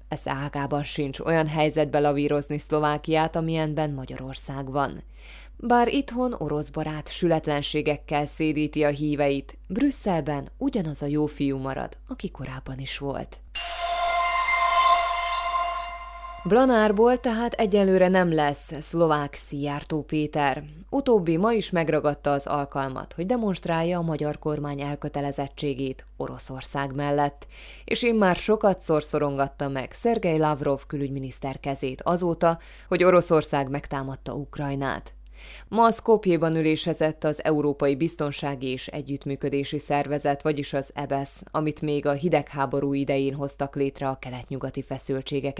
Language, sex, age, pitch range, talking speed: Hungarian, female, 20-39, 140-170 Hz, 115 wpm